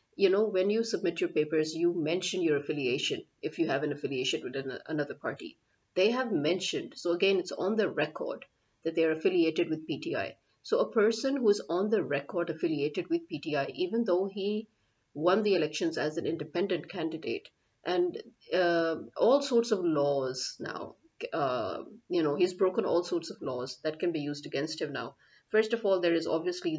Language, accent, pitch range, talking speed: English, Indian, 155-200 Hz, 190 wpm